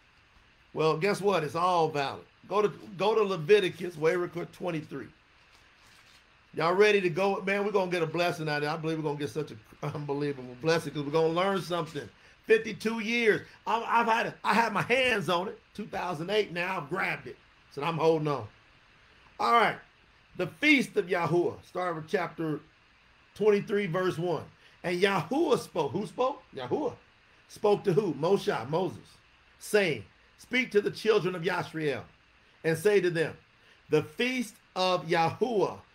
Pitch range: 150-205 Hz